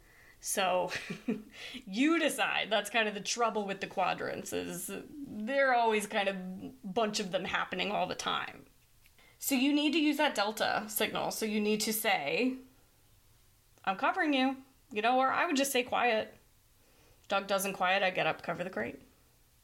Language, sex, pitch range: English, female, 185-225 Hz